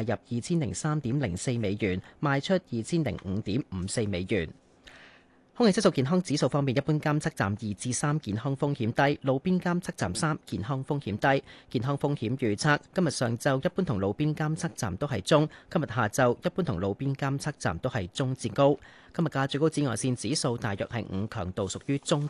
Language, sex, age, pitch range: Chinese, male, 30-49, 110-150 Hz